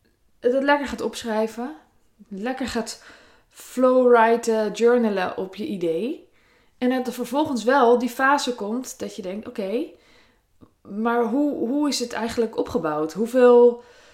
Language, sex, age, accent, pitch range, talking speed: Dutch, female, 20-39, Dutch, 190-255 Hz, 135 wpm